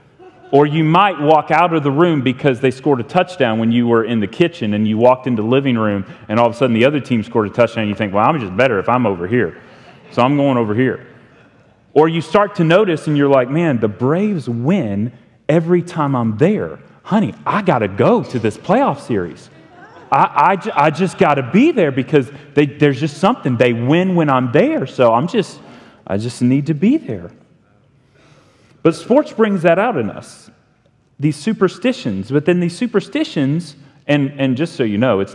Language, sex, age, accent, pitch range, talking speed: English, male, 30-49, American, 120-160 Hz, 210 wpm